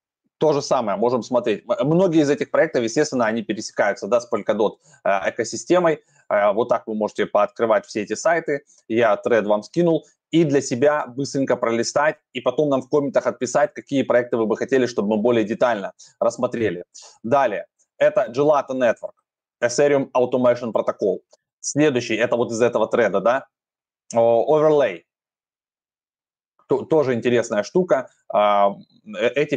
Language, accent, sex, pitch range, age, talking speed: Russian, native, male, 115-150 Hz, 20-39, 140 wpm